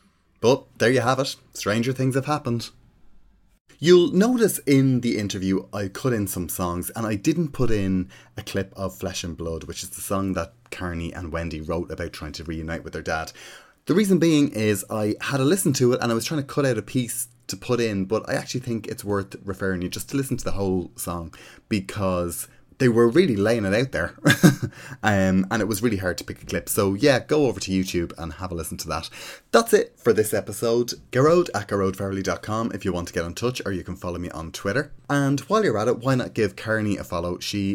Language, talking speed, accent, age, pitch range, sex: English, 235 wpm, Irish, 30-49, 90-125 Hz, male